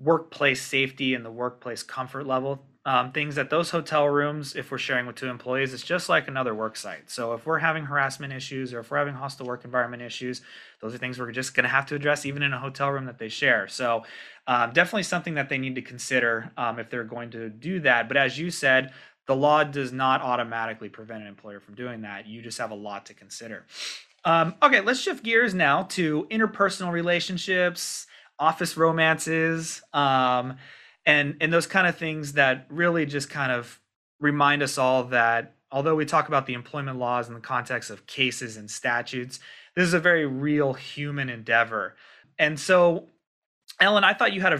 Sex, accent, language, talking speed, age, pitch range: male, American, English, 200 wpm, 30-49, 125-160 Hz